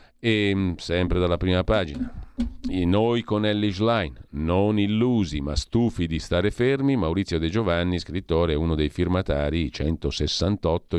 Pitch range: 80-110 Hz